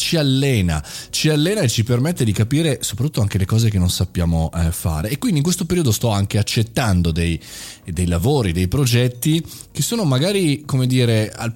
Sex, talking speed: male, 185 wpm